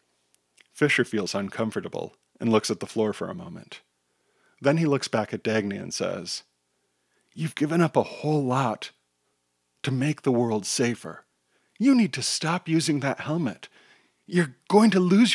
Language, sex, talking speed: English, male, 160 wpm